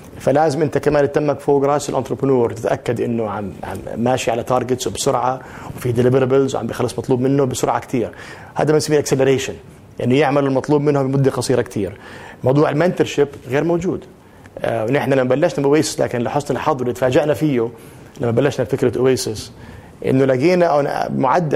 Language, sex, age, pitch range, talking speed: Arabic, male, 30-49, 125-150 Hz, 155 wpm